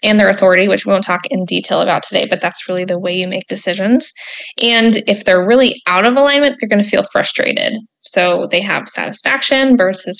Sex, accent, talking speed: female, American, 210 wpm